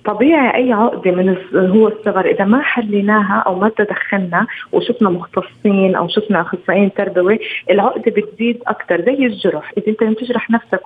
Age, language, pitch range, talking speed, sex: 20-39, Arabic, 190-230 Hz, 150 wpm, female